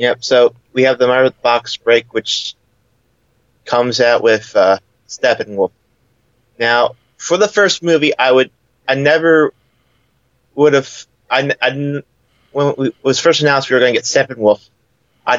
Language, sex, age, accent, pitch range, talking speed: English, male, 30-49, American, 115-130 Hz, 160 wpm